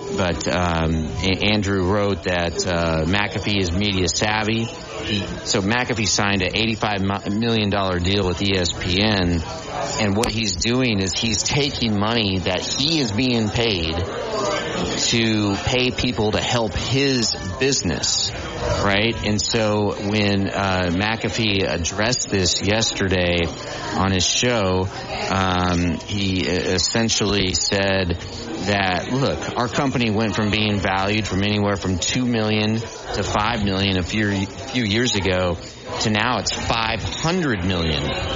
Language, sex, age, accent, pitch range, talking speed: English, male, 30-49, American, 95-115 Hz, 130 wpm